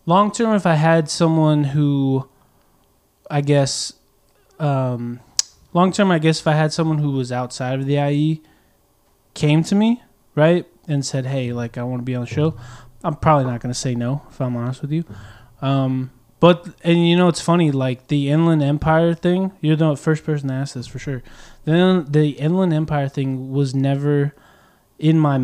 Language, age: English, 20-39